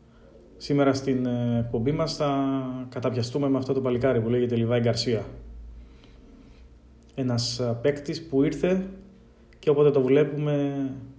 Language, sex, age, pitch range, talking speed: Greek, male, 20-39, 115-130 Hz, 120 wpm